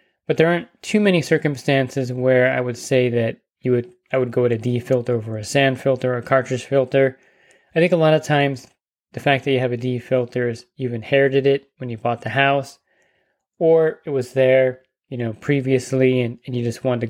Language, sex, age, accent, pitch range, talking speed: English, male, 20-39, American, 125-140 Hz, 225 wpm